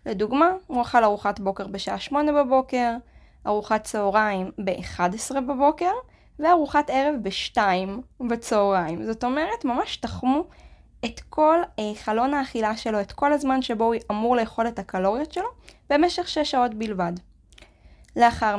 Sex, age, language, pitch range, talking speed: female, 20-39, Hebrew, 200-265 Hz, 130 wpm